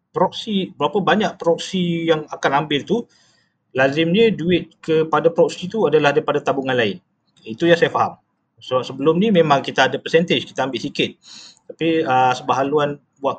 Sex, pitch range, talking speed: male, 125-175 Hz, 155 wpm